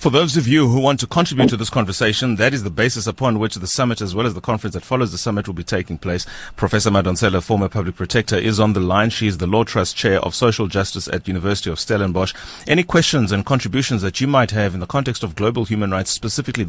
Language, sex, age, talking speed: English, male, 30-49, 255 wpm